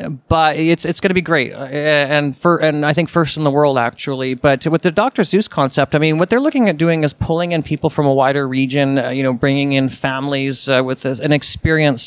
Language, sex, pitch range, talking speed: English, male, 135-165 Hz, 240 wpm